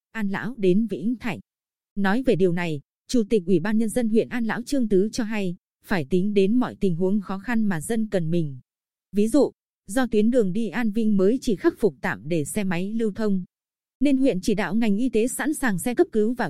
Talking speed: 235 wpm